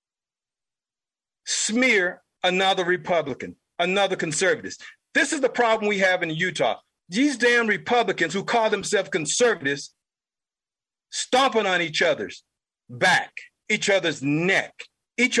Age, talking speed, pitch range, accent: 50-69, 115 wpm, 195-280 Hz, American